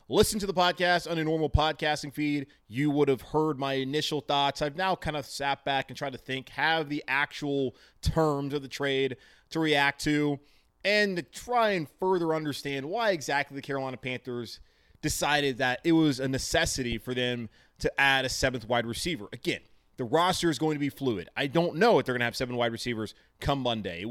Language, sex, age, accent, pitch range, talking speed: English, male, 20-39, American, 130-155 Hz, 205 wpm